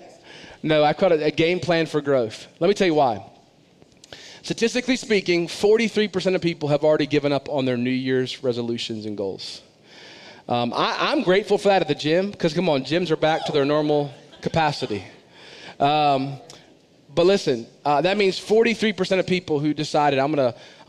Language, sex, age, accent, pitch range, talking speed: English, male, 30-49, American, 125-165 Hz, 180 wpm